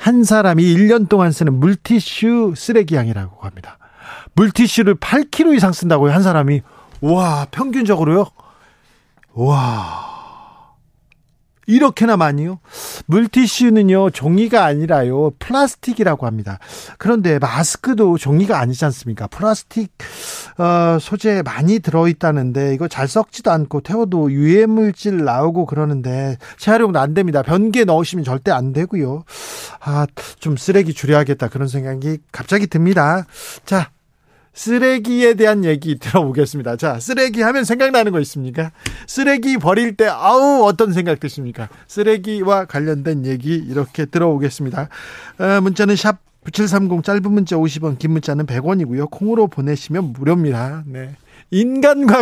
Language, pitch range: Korean, 140-215 Hz